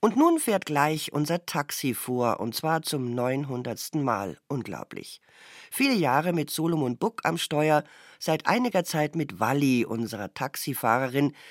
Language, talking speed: German, 140 wpm